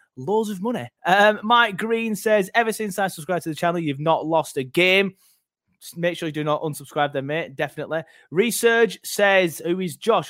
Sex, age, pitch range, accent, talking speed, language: male, 20-39, 150-190 Hz, British, 200 wpm, English